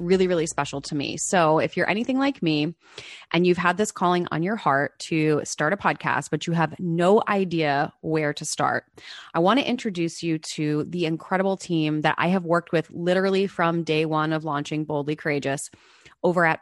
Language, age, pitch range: English, 20-39, 155-200 Hz